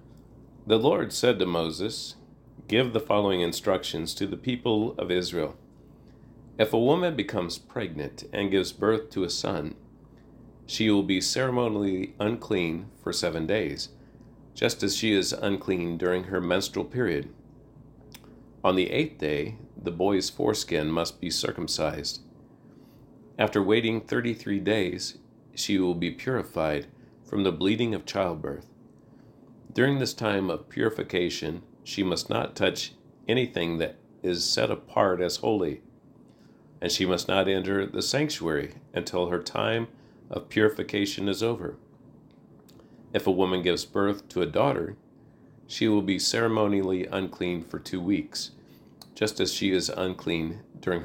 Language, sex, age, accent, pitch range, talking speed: English, male, 50-69, American, 90-110 Hz, 140 wpm